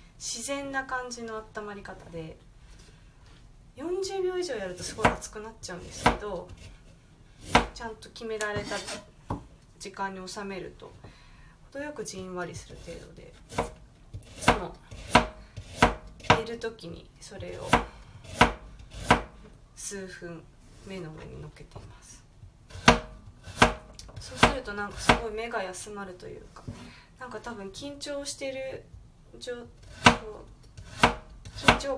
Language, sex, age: Japanese, female, 20-39